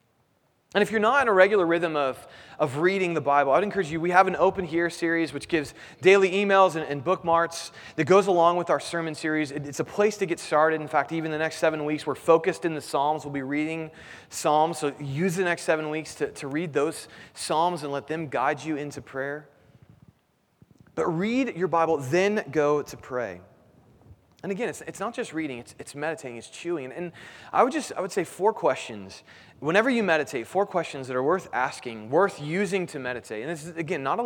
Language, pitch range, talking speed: English, 140-185 Hz, 220 wpm